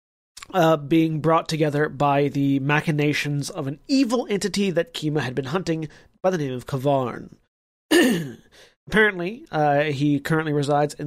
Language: English